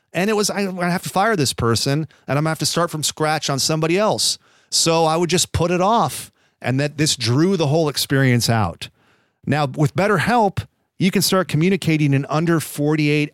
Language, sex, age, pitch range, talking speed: English, male, 40-59, 120-160 Hz, 215 wpm